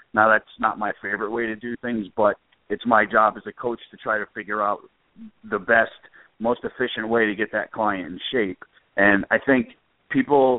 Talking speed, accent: 205 wpm, American